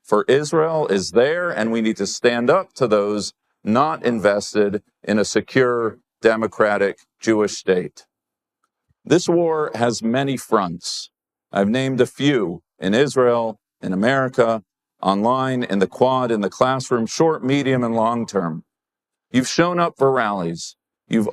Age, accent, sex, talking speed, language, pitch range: 40-59, American, male, 140 wpm, English, 115-150 Hz